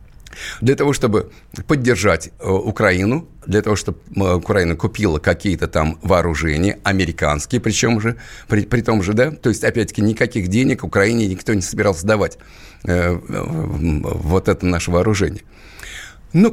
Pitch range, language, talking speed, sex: 90-120 Hz, Russian, 135 wpm, male